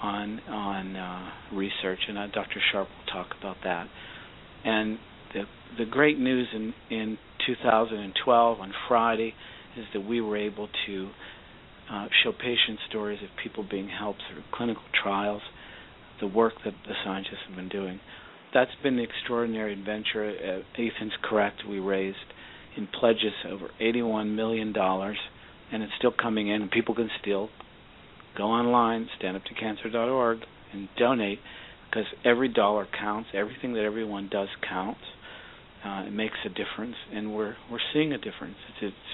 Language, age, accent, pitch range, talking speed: English, 50-69, American, 100-115 Hz, 150 wpm